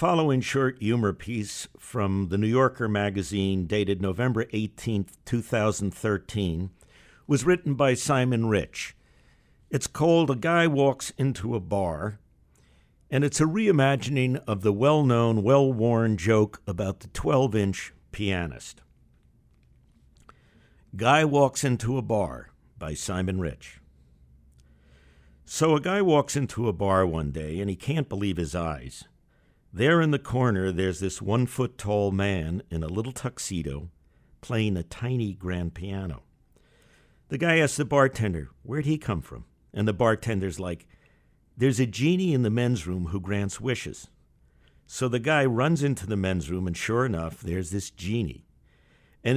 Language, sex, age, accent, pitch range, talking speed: English, male, 60-79, American, 90-130 Hz, 145 wpm